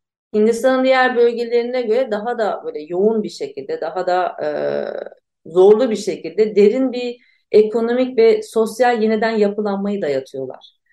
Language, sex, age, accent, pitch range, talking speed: Turkish, female, 40-59, native, 155-235 Hz, 130 wpm